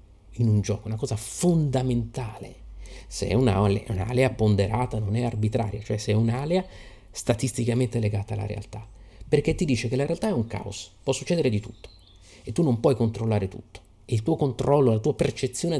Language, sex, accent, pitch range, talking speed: Italian, male, native, 105-130 Hz, 180 wpm